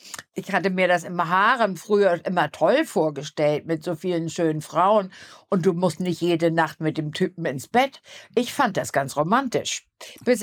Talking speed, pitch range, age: 185 wpm, 170-225 Hz, 60-79